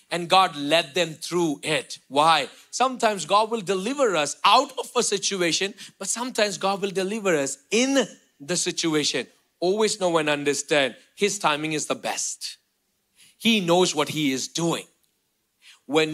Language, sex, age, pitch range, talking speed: English, male, 40-59, 190-300 Hz, 150 wpm